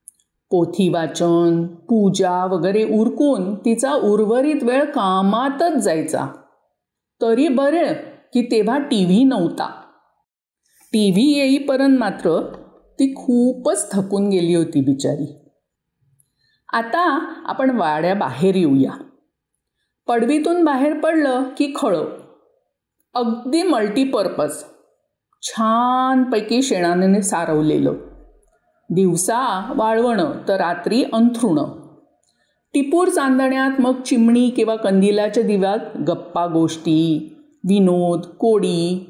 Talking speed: 90 wpm